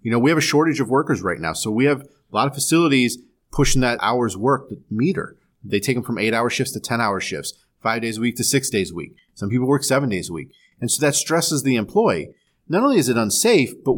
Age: 30-49